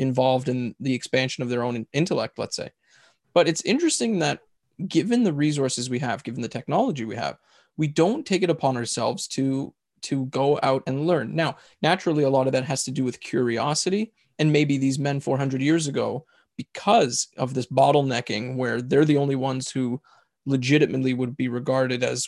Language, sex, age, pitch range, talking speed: English, male, 20-39, 130-155 Hz, 185 wpm